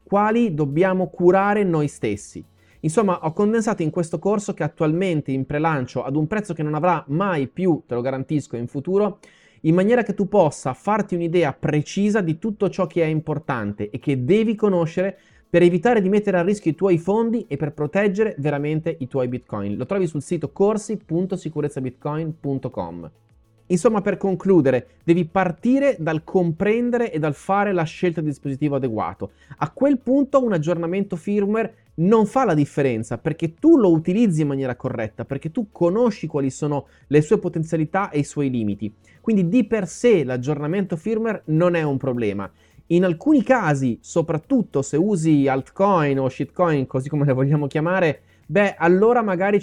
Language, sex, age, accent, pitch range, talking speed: Italian, male, 30-49, native, 145-200 Hz, 165 wpm